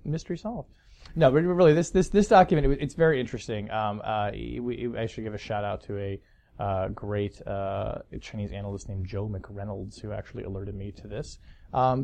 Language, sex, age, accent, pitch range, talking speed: English, male, 20-39, American, 100-130 Hz, 205 wpm